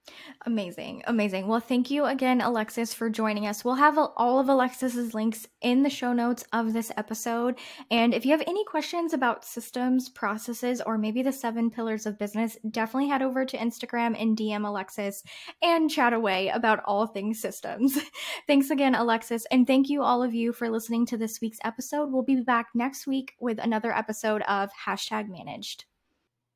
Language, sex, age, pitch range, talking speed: English, female, 10-29, 210-265 Hz, 180 wpm